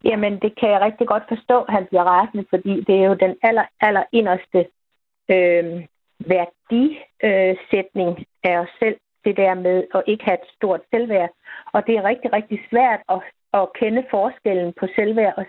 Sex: female